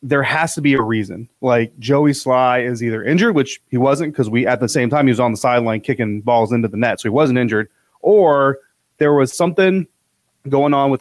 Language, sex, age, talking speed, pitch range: English, male, 30-49, 230 wpm, 115-140 Hz